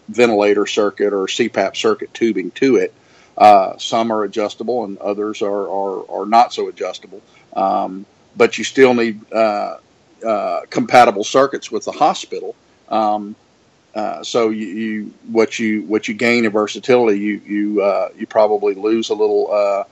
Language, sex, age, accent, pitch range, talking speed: English, male, 50-69, American, 105-135 Hz, 160 wpm